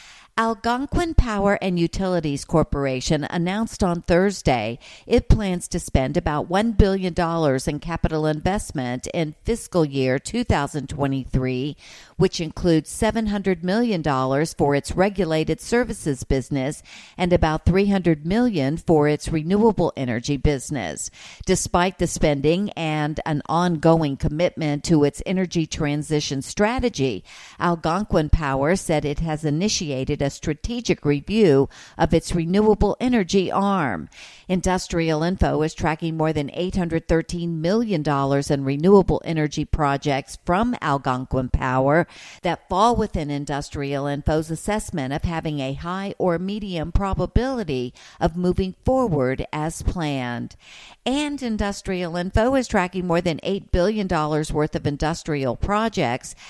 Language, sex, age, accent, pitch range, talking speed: English, female, 50-69, American, 145-190 Hz, 120 wpm